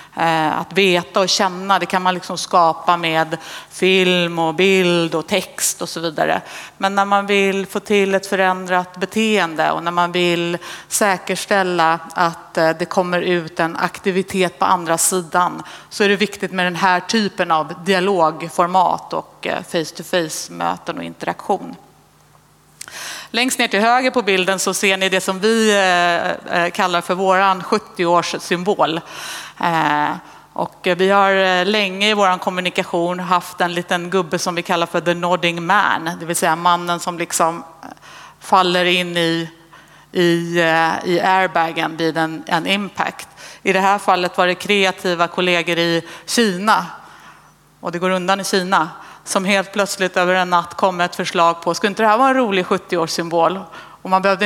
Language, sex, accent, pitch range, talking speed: Swedish, female, native, 170-195 Hz, 160 wpm